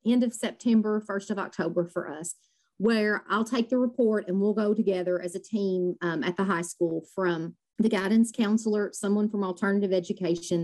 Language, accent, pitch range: English, American, 180-225 Hz